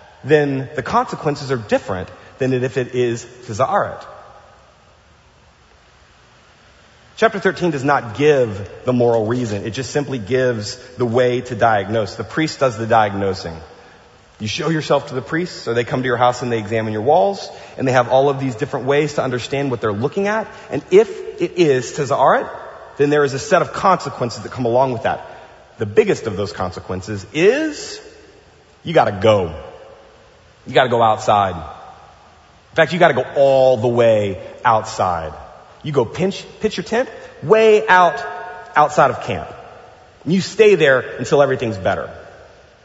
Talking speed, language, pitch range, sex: 165 wpm, English, 105-155 Hz, male